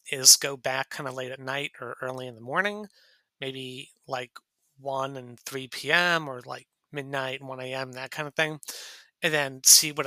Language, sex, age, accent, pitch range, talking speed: English, male, 30-49, American, 130-165 Hz, 195 wpm